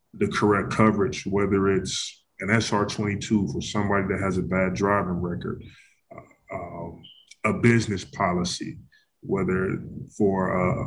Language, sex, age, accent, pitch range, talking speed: English, male, 20-39, American, 95-105 Hz, 135 wpm